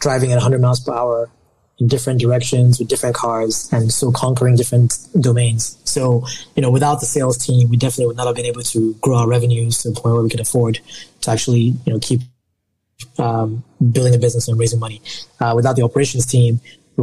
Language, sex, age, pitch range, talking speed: English, male, 20-39, 115-130 Hz, 215 wpm